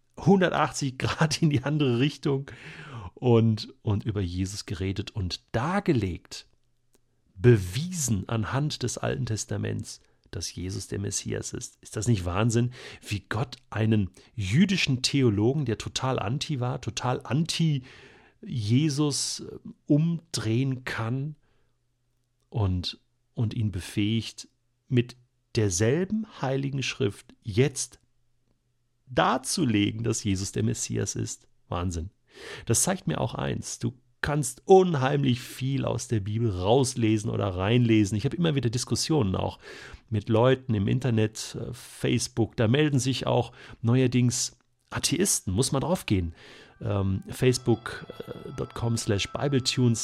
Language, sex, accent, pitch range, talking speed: German, male, German, 110-135 Hz, 115 wpm